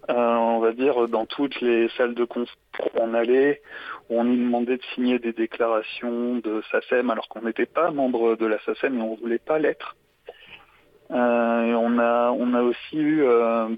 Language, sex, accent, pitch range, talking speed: French, male, French, 115-130 Hz, 195 wpm